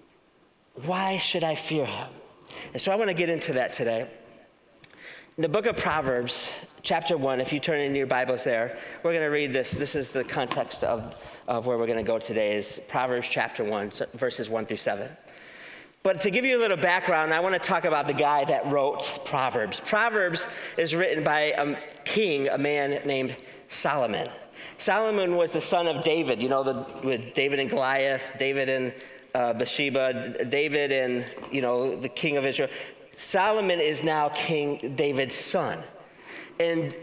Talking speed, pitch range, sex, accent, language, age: 180 wpm, 145-200 Hz, male, American, English, 40-59